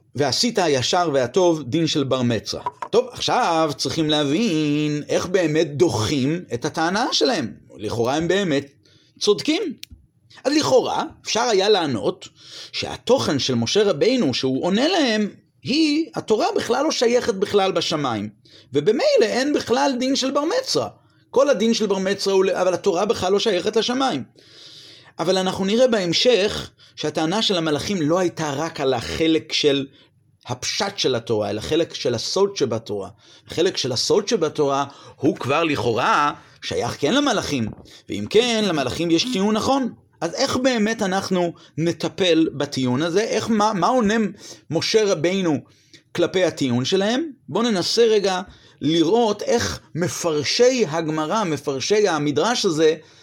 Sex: male